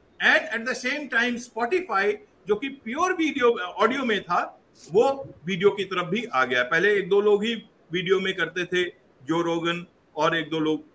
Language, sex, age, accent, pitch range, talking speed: English, male, 50-69, Indian, 200-275 Hz, 145 wpm